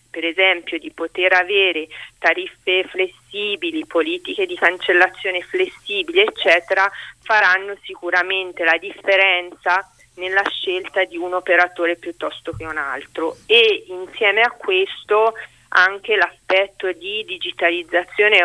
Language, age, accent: Italian, 40-59, native